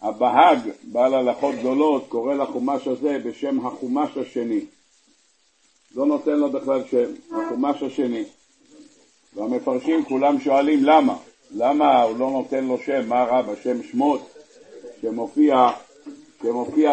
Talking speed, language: 115 wpm, Hebrew